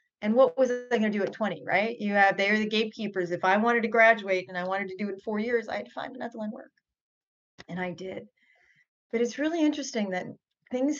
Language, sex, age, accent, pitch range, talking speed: English, female, 30-49, American, 195-255 Hz, 250 wpm